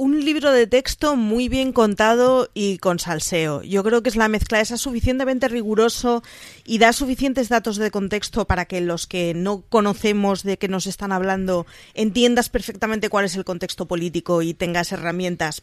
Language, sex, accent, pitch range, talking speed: Spanish, female, Spanish, 180-235 Hz, 175 wpm